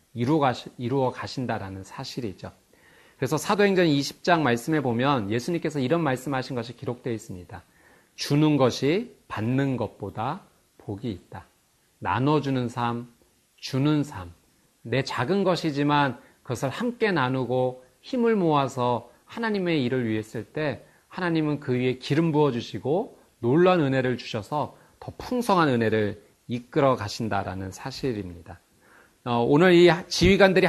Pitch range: 120-165 Hz